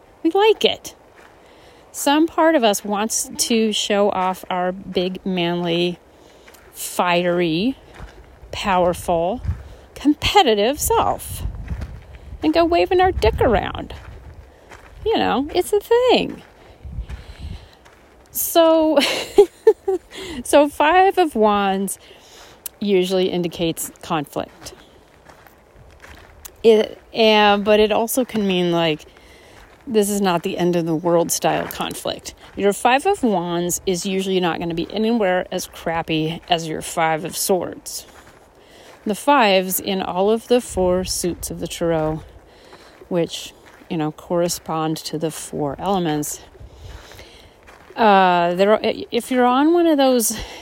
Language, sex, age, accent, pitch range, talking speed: English, female, 40-59, American, 175-250 Hz, 115 wpm